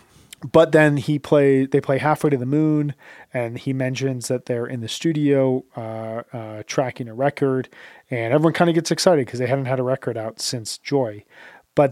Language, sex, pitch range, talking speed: English, male, 120-145 Hz, 195 wpm